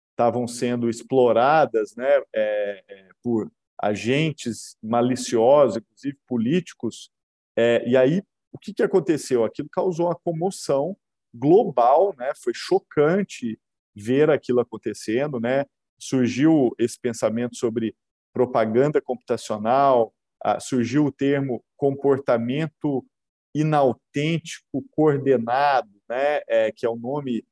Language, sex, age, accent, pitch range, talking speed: Portuguese, male, 40-59, Brazilian, 120-170 Hz, 95 wpm